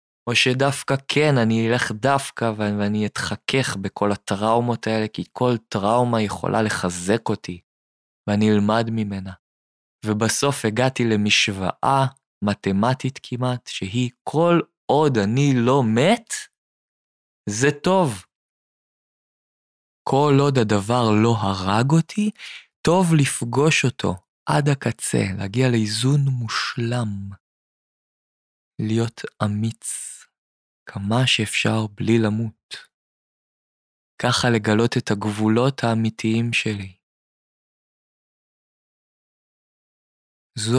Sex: male